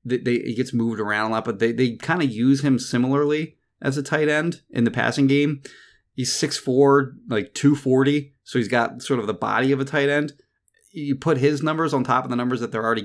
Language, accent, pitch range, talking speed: English, American, 115-140 Hz, 240 wpm